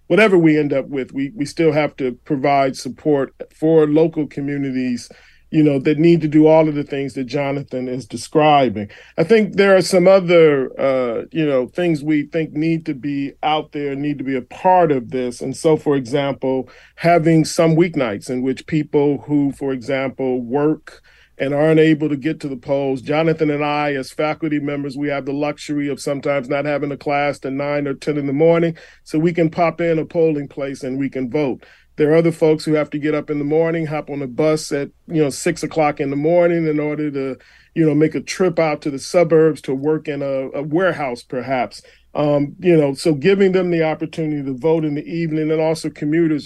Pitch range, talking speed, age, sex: 140-160 Hz, 220 wpm, 40-59, male